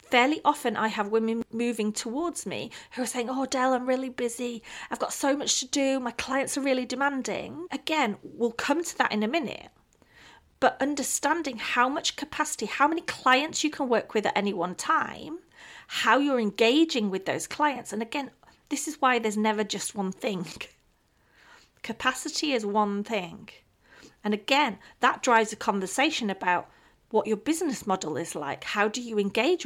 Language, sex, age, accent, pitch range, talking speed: English, female, 40-59, British, 210-280 Hz, 180 wpm